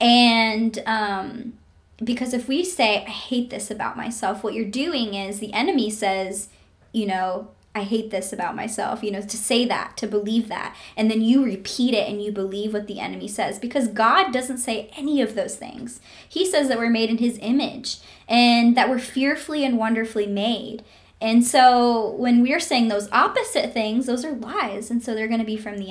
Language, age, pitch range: English, 10-29, 215-255 Hz